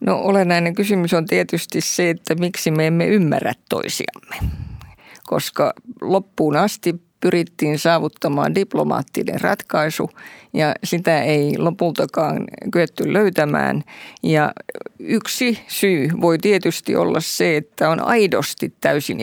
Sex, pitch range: female, 160-205 Hz